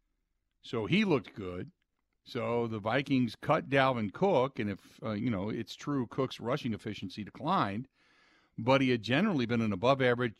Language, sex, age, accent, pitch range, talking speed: English, male, 50-69, American, 105-140 Hz, 165 wpm